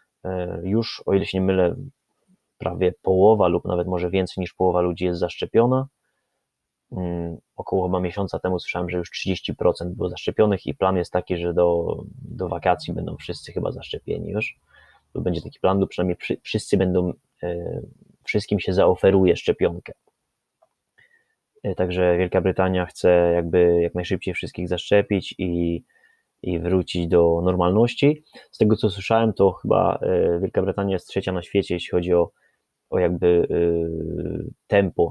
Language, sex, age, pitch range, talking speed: Polish, male, 20-39, 90-100 Hz, 145 wpm